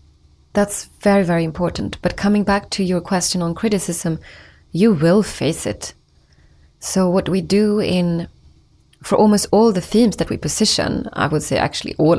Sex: female